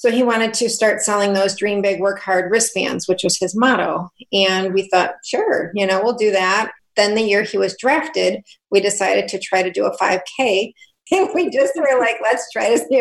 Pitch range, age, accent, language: 190-235 Hz, 40-59, American, English